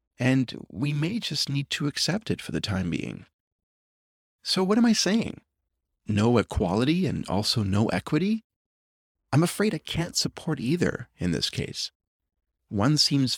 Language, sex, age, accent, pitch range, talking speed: English, male, 30-49, American, 100-150 Hz, 155 wpm